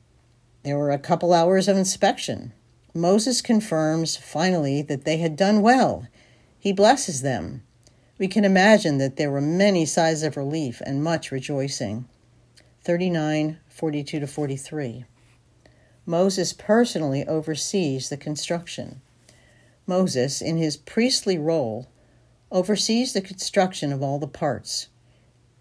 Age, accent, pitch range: 50-69, American, 125-180 Hz